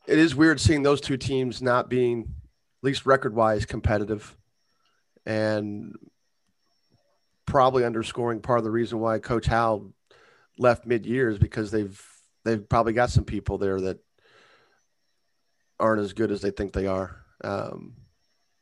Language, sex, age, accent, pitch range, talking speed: English, male, 40-59, American, 105-125 Hz, 145 wpm